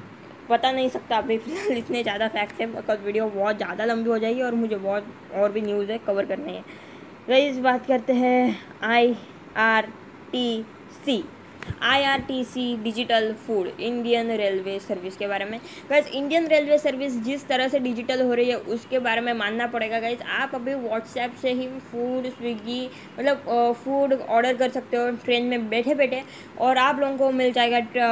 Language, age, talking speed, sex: Hindi, 20-39, 185 wpm, female